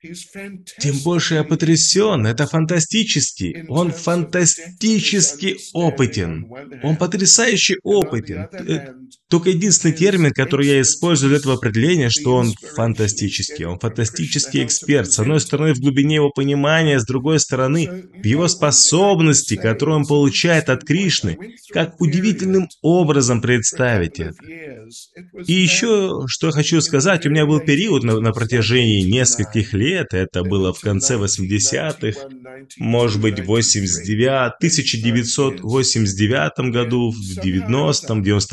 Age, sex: 20-39, male